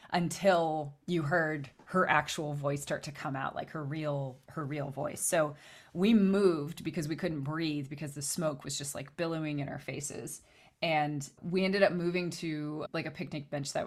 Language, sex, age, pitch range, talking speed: English, female, 20-39, 145-165 Hz, 190 wpm